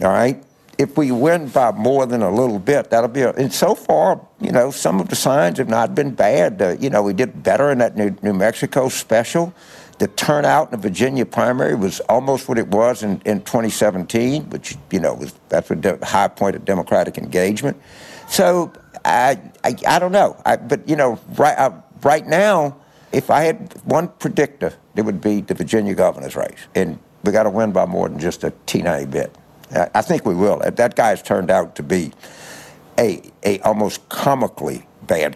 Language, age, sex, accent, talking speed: English, 60-79, male, American, 200 wpm